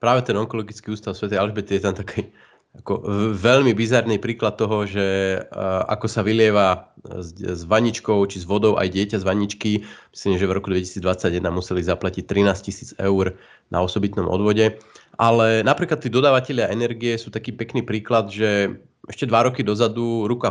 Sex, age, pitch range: male, 30-49, 100-120 Hz